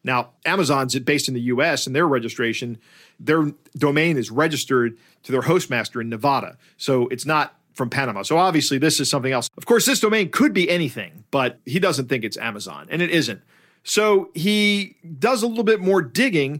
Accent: American